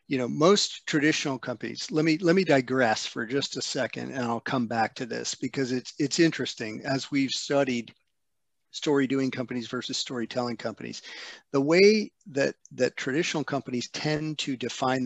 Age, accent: 50-69, American